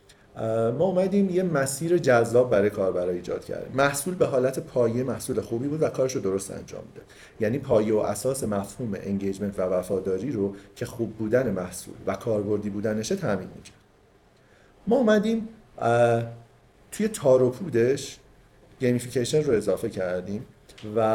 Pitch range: 100-140 Hz